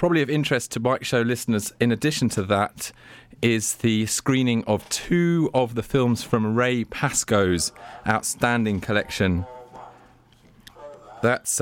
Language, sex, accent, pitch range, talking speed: English, male, British, 100-125 Hz, 130 wpm